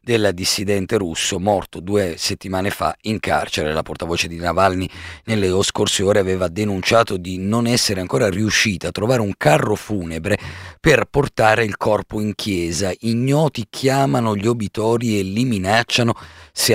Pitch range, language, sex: 90-115 Hz, Italian, male